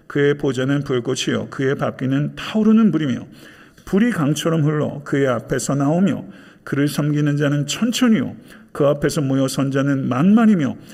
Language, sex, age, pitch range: Korean, male, 50-69, 135-175 Hz